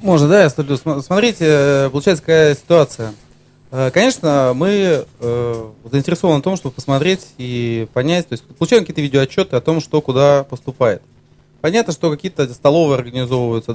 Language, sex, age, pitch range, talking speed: Russian, male, 30-49, 130-175 Hz, 140 wpm